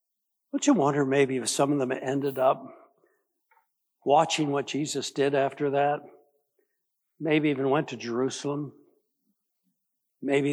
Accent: American